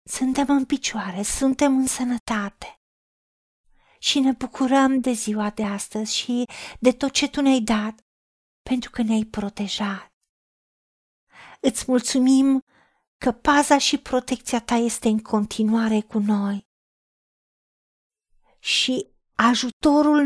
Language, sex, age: Romanian, female, 40-59